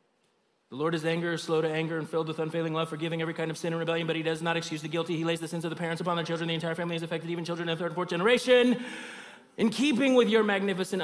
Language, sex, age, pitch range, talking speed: English, male, 30-49, 150-200 Hz, 295 wpm